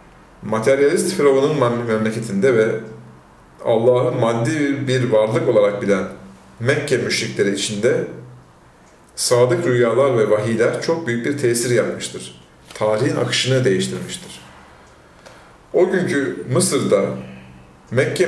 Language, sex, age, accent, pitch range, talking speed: Turkish, male, 40-59, native, 95-150 Hz, 95 wpm